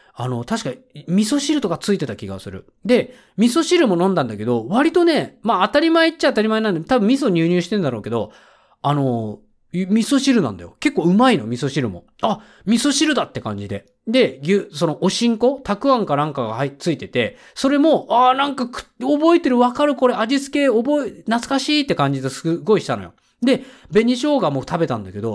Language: Japanese